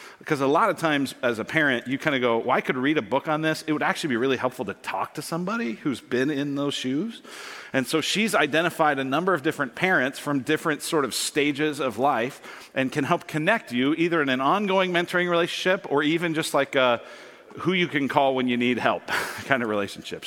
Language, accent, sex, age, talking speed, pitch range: English, American, male, 40-59, 230 wpm, 120-170 Hz